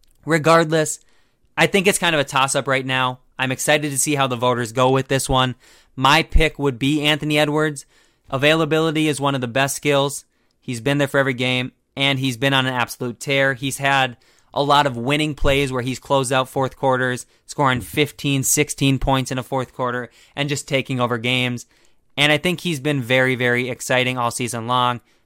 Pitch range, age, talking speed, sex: 125-145 Hz, 20-39, 200 wpm, male